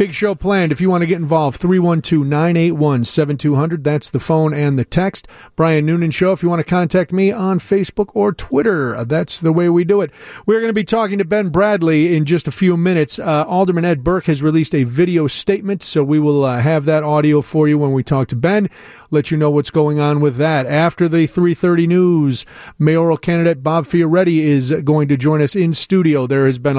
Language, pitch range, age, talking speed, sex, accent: English, 150-190 Hz, 40-59, 215 wpm, male, American